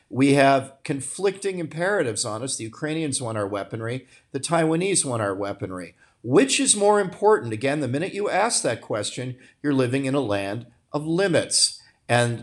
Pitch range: 115-150 Hz